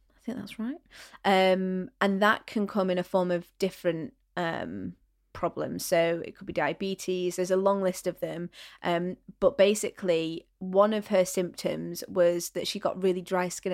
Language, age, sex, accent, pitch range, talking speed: English, 20-39, female, British, 175-195 Hz, 175 wpm